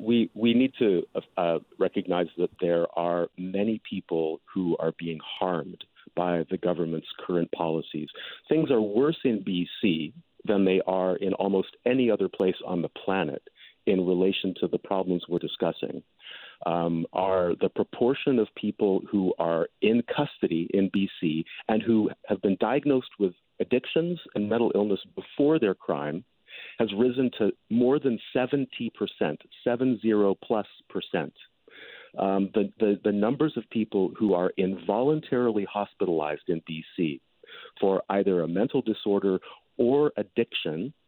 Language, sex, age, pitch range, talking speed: English, male, 50-69, 95-115 Hz, 145 wpm